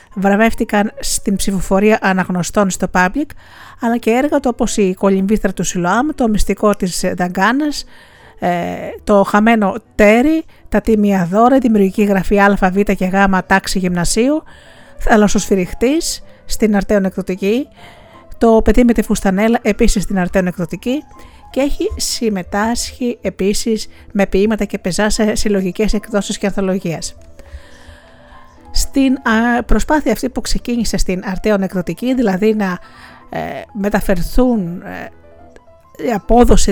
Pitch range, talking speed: 190-225 Hz, 115 wpm